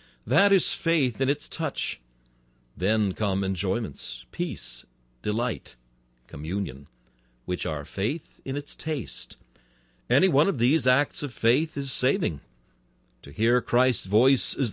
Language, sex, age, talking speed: English, male, 60-79, 130 wpm